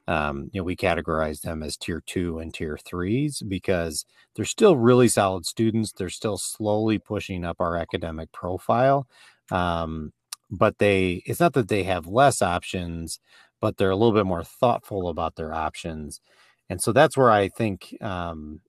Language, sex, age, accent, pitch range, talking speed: English, male, 30-49, American, 85-110 Hz, 170 wpm